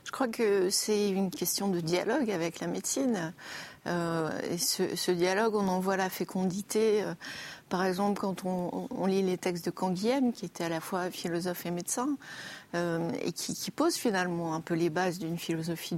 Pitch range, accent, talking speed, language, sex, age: 170-215 Hz, French, 190 wpm, French, female, 30-49